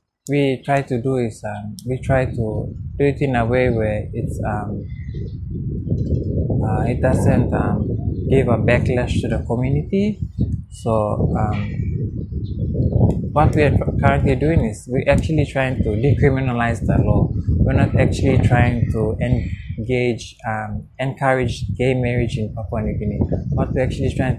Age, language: 20-39, English